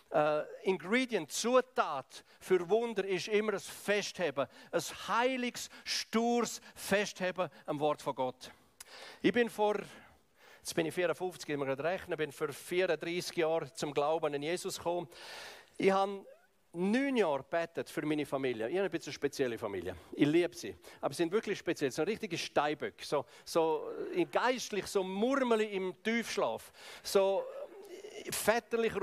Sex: male